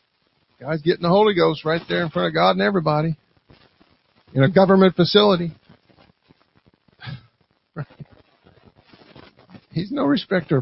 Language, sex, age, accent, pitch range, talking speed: English, male, 50-69, American, 150-185 Hz, 115 wpm